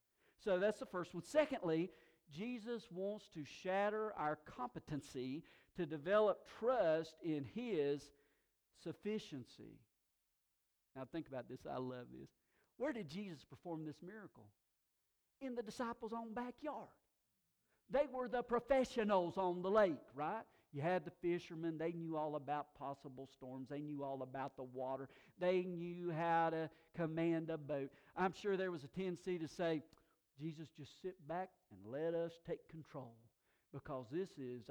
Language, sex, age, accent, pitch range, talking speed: English, male, 50-69, American, 135-190 Hz, 150 wpm